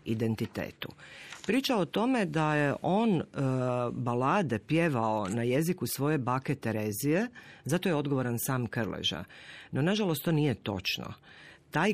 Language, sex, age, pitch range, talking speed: Croatian, female, 40-59, 110-155 Hz, 130 wpm